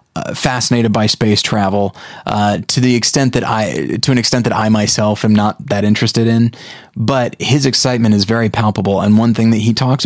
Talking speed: 205 wpm